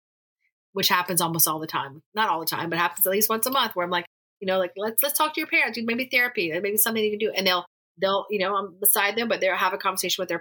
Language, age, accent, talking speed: English, 30-49, American, 295 wpm